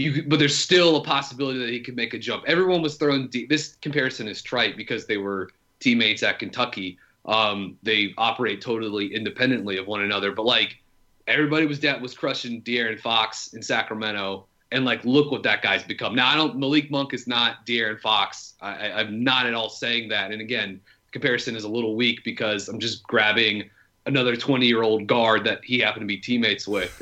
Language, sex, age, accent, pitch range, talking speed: English, male, 30-49, American, 110-130 Hz, 200 wpm